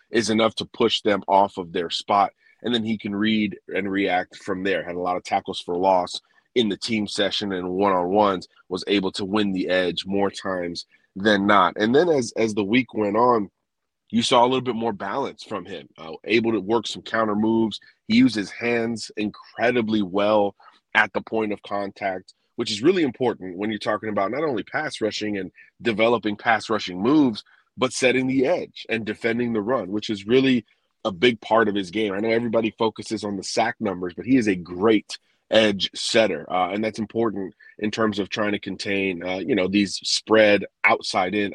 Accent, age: American, 30-49